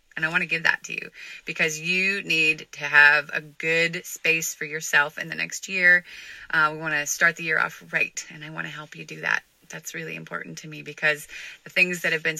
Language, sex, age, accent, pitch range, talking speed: English, female, 30-49, American, 155-175 Hz, 240 wpm